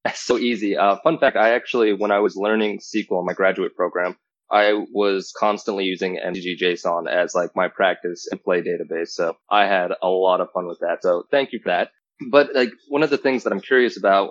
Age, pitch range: 20-39, 95-105 Hz